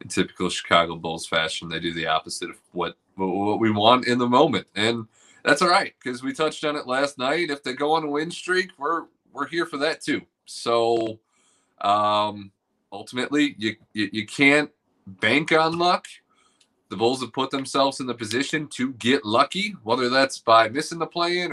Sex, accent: male, American